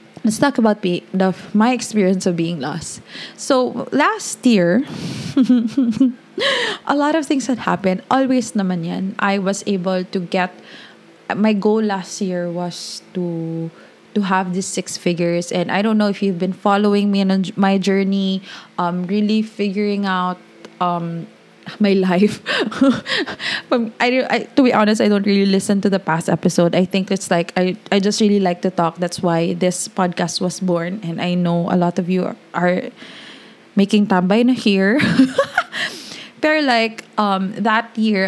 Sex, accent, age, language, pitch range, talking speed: female, Filipino, 20-39, English, 180-215 Hz, 165 wpm